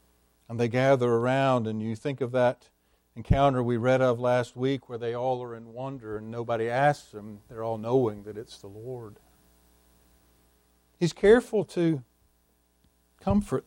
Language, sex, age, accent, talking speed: English, male, 50-69, American, 160 wpm